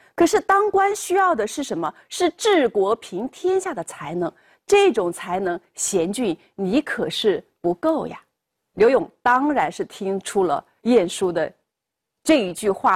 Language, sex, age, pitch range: Chinese, female, 30-49, 215-350 Hz